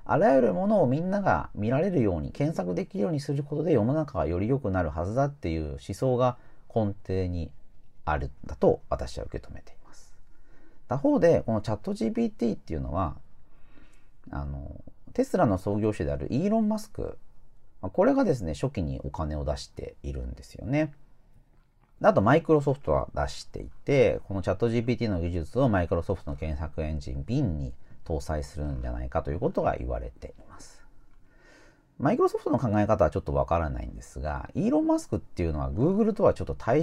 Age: 40-59